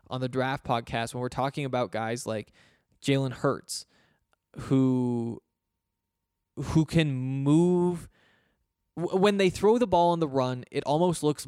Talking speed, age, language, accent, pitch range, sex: 140 wpm, 20-39, English, American, 130-155 Hz, male